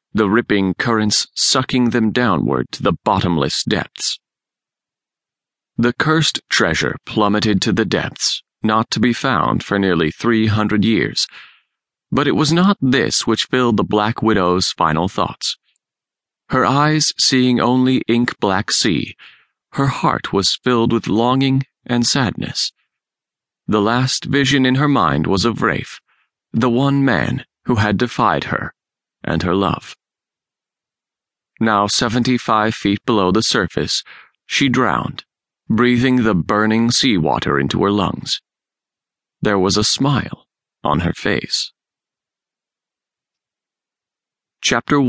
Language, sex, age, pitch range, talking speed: English, male, 30-49, 100-125 Hz, 125 wpm